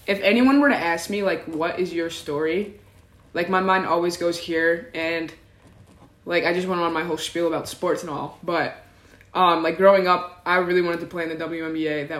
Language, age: English, 20-39